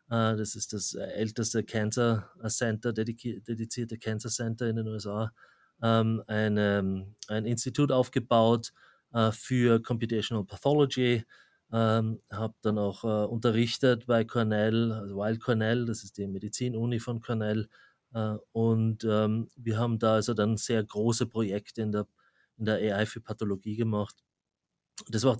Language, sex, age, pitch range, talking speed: English, male, 30-49, 110-120 Hz, 130 wpm